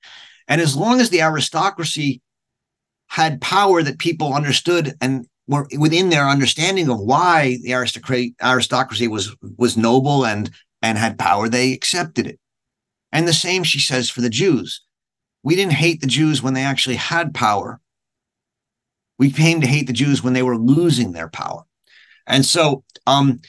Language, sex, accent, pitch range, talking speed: English, male, American, 125-155 Hz, 160 wpm